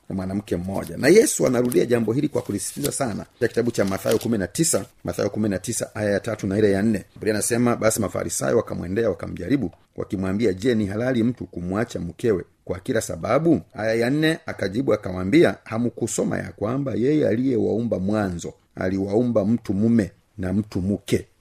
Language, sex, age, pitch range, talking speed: Swahili, male, 40-59, 95-120 Hz, 160 wpm